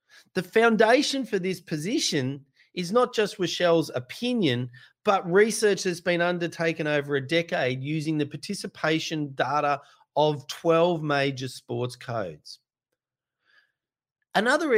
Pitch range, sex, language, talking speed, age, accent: 150-210 Hz, male, English, 115 wpm, 40-59, Australian